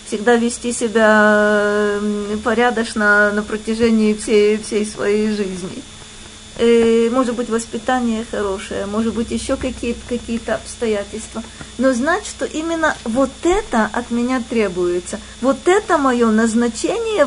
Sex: female